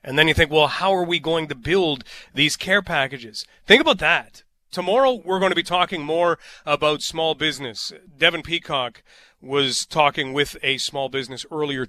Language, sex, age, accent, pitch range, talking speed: English, male, 30-49, American, 135-175 Hz, 180 wpm